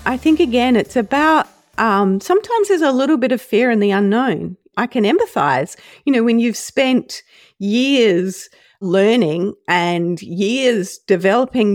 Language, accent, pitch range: English, Australian, 180-235 Hz